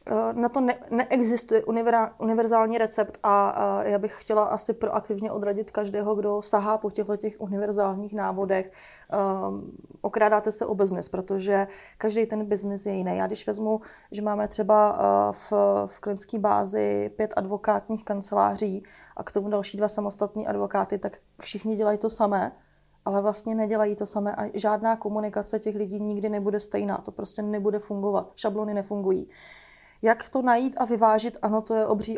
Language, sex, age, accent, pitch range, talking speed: Czech, female, 30-49, native, 205-220 Hz, 160 wpm